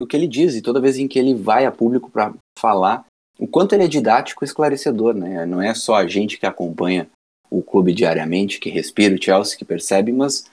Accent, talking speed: Brazilian, 220 wpm